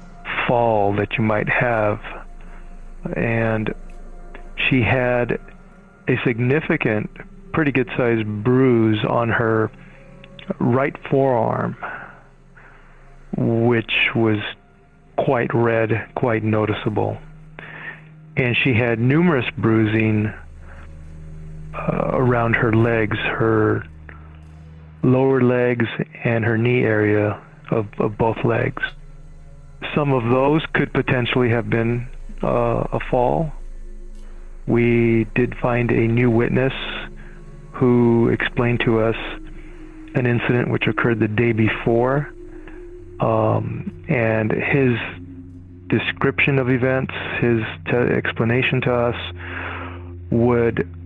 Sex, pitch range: male, 105-130 Hz